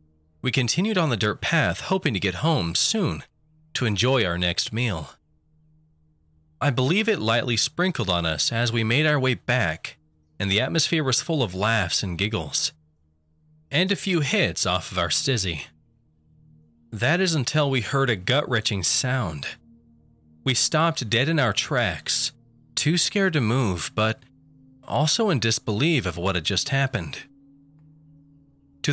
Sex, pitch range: male, 90-145 Hz